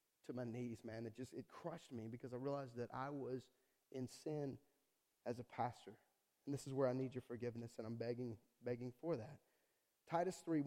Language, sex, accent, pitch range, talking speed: English, male, American, 130-165 Hz, 200 wpm